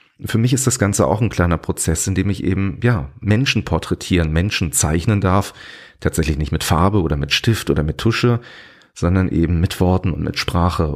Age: 40-59